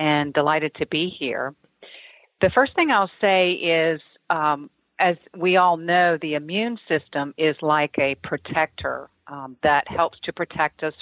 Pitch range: 145-180 Hz